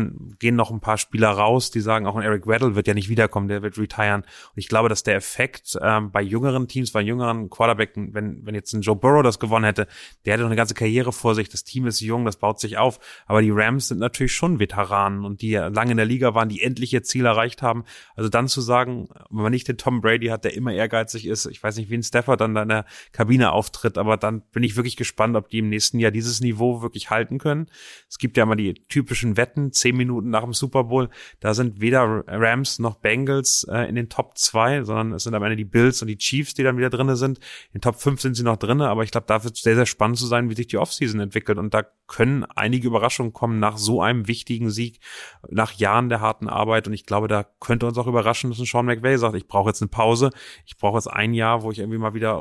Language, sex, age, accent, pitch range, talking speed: German, male, 30-49, German, 110-125 Hz, 260 wpm